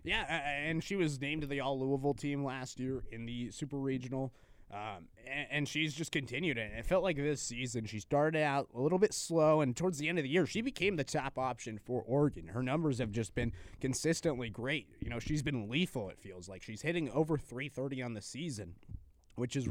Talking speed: 220 wpm